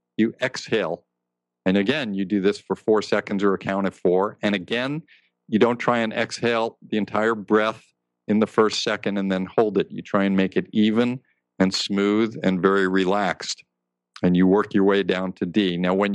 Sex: male